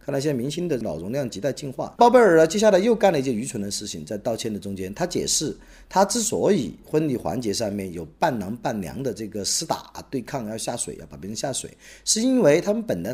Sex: male